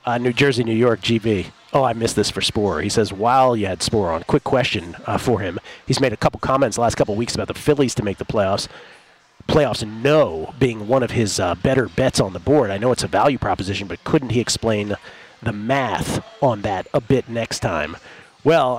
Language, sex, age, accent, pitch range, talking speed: English, male, 40-59, American, 110-135 Hz, 225 wpm